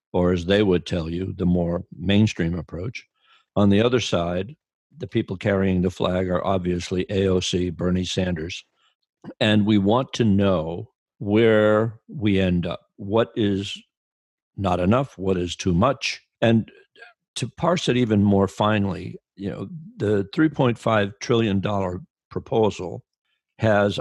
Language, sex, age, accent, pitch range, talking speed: English, male, 60-79, American, 95-115 Hz, 140 wpm